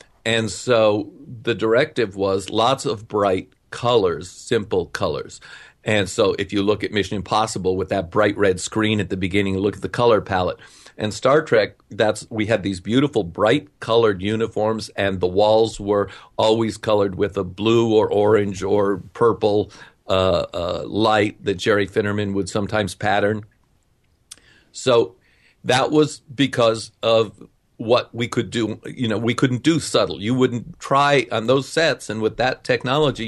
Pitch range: 100-125 Hz